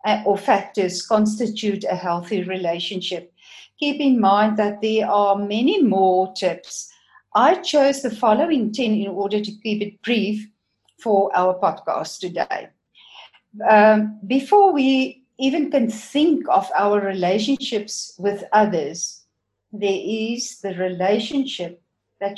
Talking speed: 125 wpm